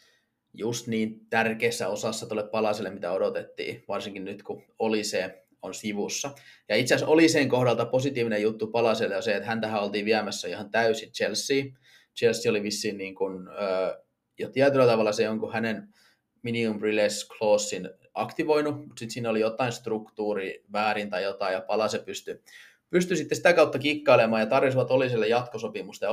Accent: native